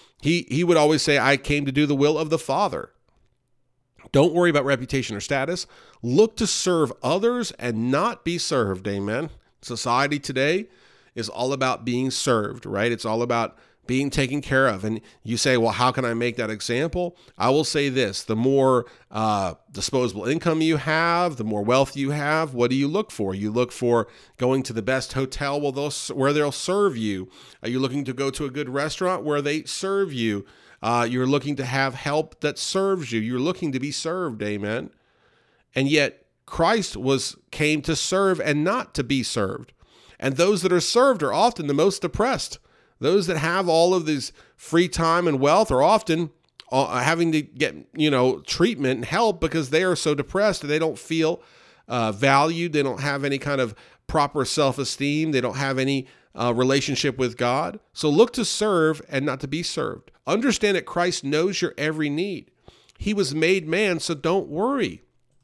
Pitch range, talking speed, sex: 125-165 Hz, 190 wpm, male